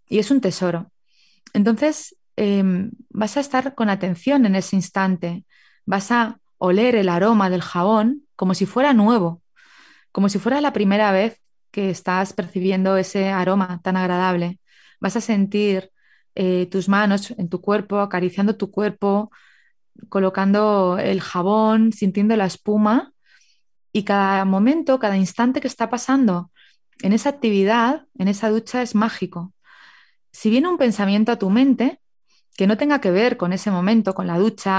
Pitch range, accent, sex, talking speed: 185-225 Hz, Spanish, female, 155 wpm